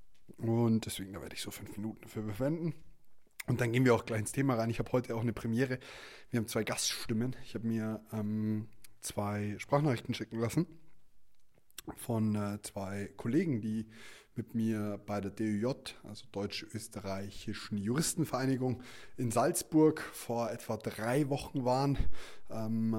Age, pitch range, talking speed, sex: 20-39, 110-130 Hz, 150 wpm, male